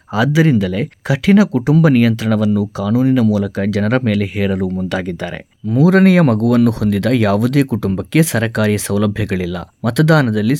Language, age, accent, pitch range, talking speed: Kannada, 20-39, native, 100-135 Hz, 100 wpm